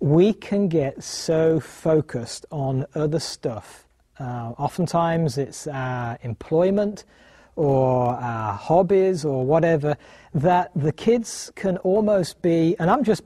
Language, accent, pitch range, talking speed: English, British, 140-190 Hz, 120 wpm